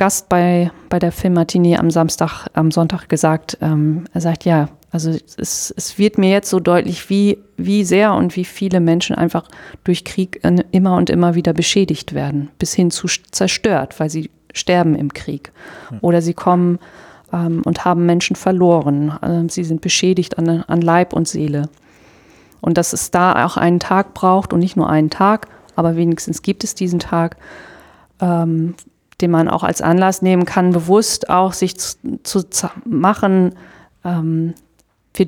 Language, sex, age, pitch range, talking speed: German, female, 40-59, 165-185 Hz, 165 wpm